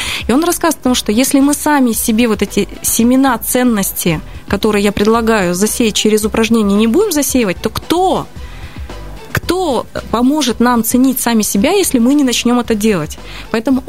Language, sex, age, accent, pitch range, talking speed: Russian, female, 20-39, native, 210-270 Hz, 165 wpm